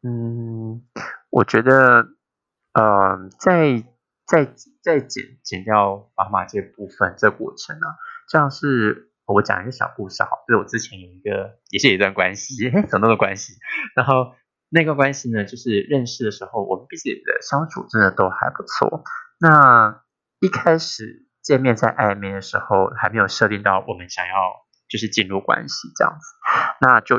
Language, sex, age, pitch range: Chinese, male, 20-39, 100-145 Hz